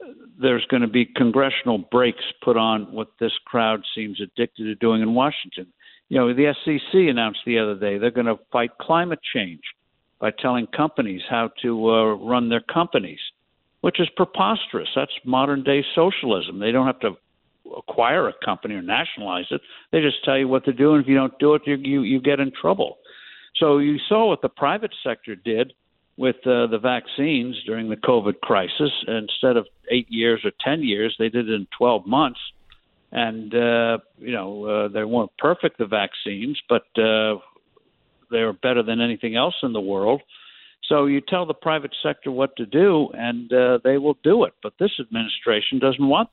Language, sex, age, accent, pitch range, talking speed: English, male, 60-79, American, 115-140 Hz, 190 wpm